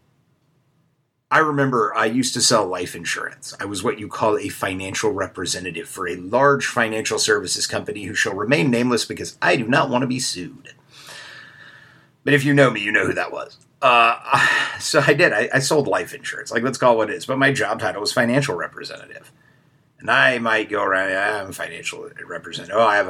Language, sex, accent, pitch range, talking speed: English, male, American, 125-150 Hz, 205 wpm